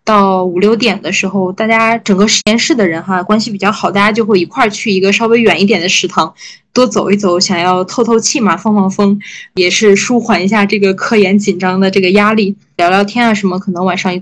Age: 20-39